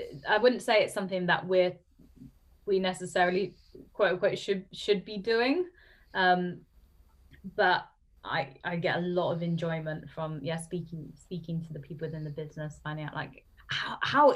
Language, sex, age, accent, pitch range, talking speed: English, female, 20-39, British, 155-190 Hz, 165 wpm